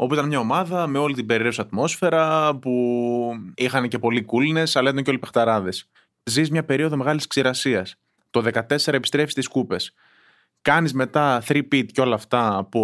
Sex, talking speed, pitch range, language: male, 175 wpm, 115-165 Hz, Greek